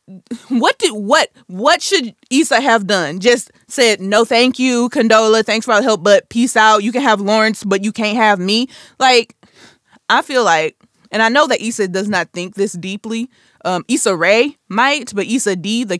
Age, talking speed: 20-39, 200 wpm